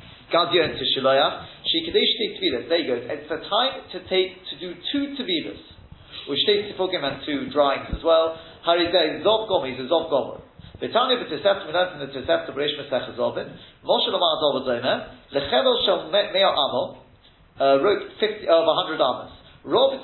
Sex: male